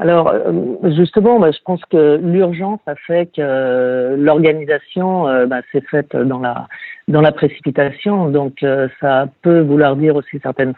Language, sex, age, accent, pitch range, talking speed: French, female, 50-69, French, 135-165 Hz, 135 wpm